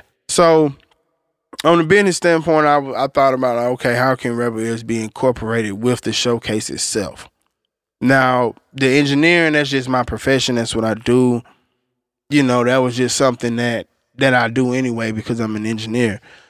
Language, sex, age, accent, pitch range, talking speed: English, male, 20-39, American, 120-140 Hz, 165 wpm